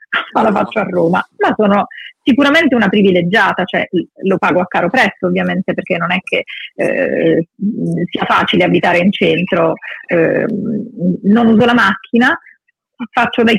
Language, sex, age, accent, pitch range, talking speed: Italian, female, 40-59, native, 180-235 Hz, 150 wpm